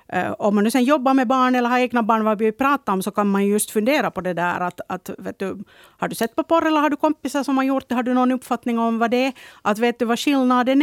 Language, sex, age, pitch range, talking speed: Swedish, female, 50-69, 195-250 Hz, 300 wpm